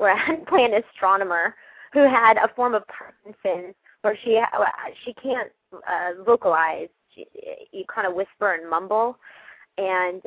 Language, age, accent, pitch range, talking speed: English, 30-49, American, 180-240 Hz, 140 wpm